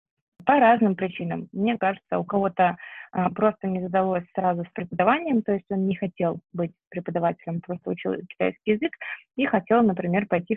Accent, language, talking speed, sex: native, Russian, 160 wpm, female